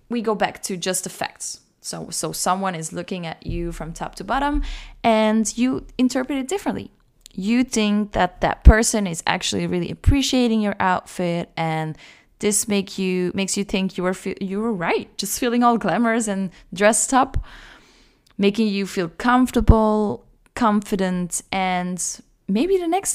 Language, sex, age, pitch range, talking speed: English, female, 10-29, 185-235 Hz, 165 wpm